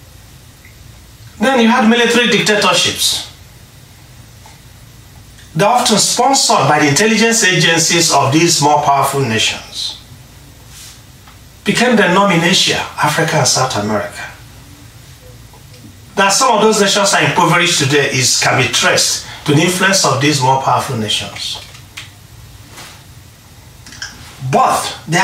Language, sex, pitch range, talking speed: English, male, 115-180 Hz, 110 wpm